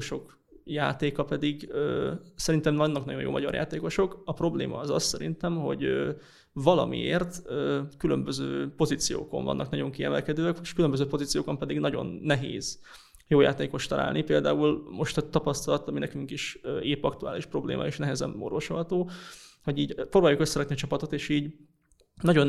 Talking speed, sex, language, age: 135 wpm, male, Hungarian, 20-39